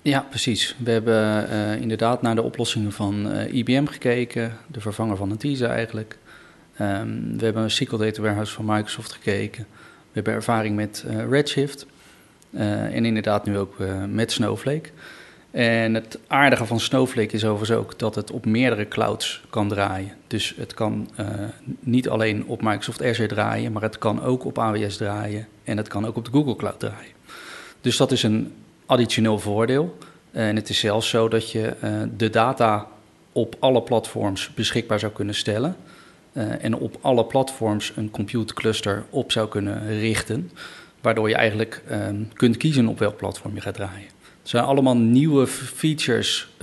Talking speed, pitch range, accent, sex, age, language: 170 wpm, 105-120 Hz, Dutch, male, 30-49, Dutch